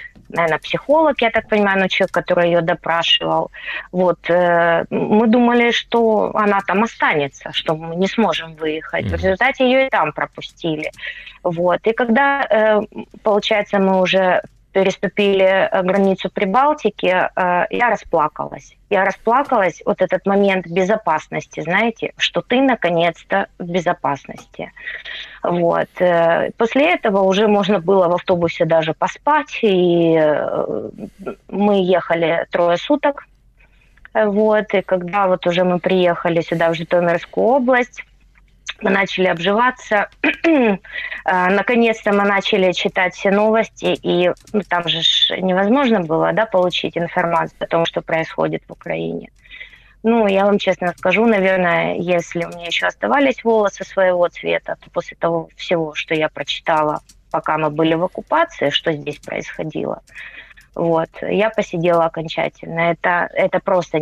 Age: 20-39